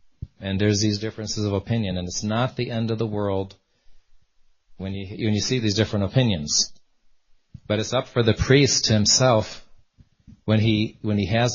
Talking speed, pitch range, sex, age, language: 175 wpm, 100-115 Hz, male, 40-59, English